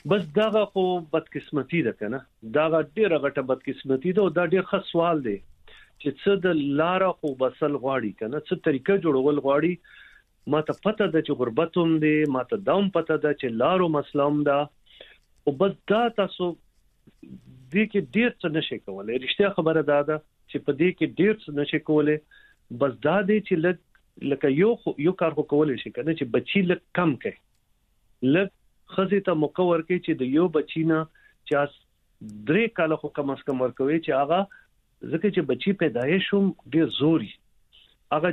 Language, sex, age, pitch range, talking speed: Urdu, male, 50-69, 140-180 Hz, 180 wpm